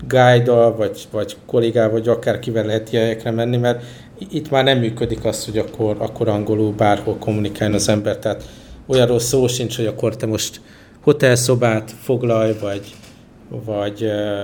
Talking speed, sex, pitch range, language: 150 wpm, male, 110-125 Hz, Hungarian